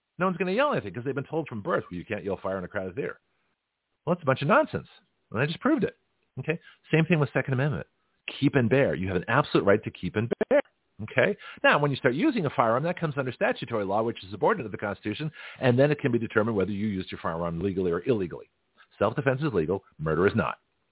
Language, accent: English, American